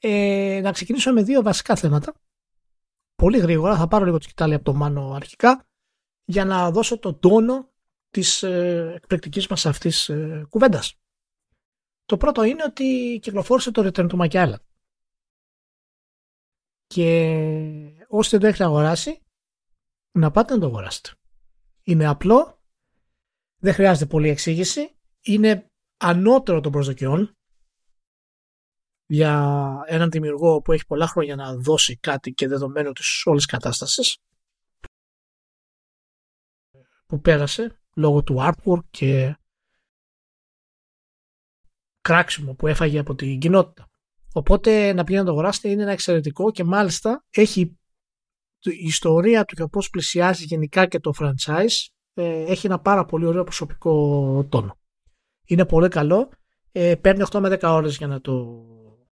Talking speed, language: 125 wpm, Greek